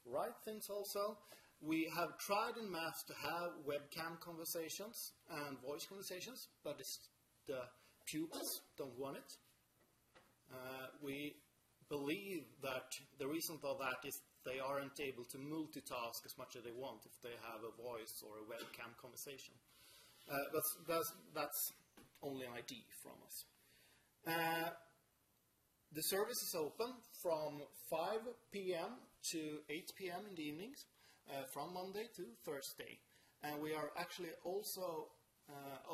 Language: English